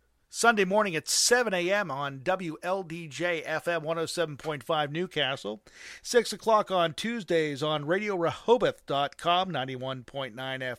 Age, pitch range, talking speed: 40-59, 145-180 Hz, 90 wpm